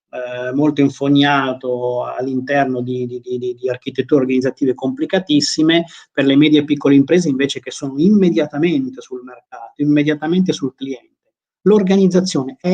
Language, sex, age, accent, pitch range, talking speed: Italian, male, 30-49, native, 125-170 Hz, 125 wpm